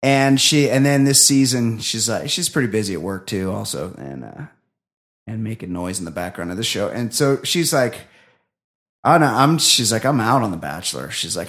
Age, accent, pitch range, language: 30-49, American, 100-145 Hz, English